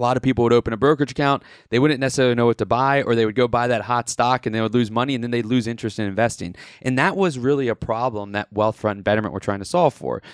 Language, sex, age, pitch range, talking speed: English, male, 20-39, 110-140 Hz, 295 wpm